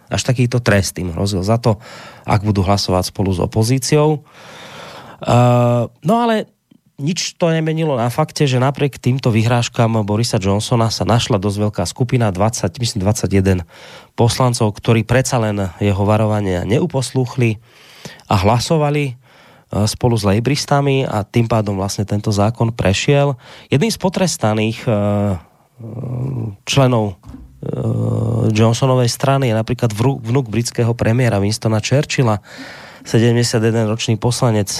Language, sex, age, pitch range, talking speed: Slovak, male, 20-39, 105-130 Hz, 125 wpm